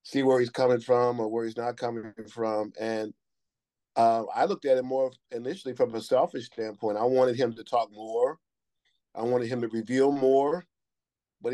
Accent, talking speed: American, 185 wpm